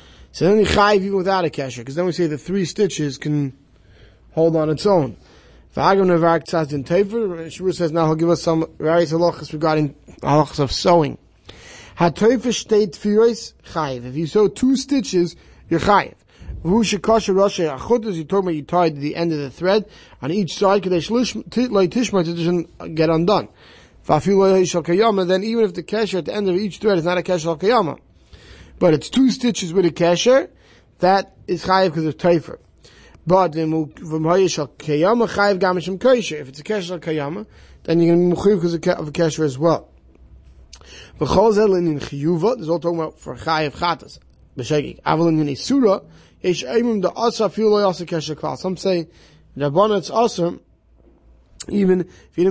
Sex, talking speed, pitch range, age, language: male, 160 wpm, 155-195 Hz, 30-49, English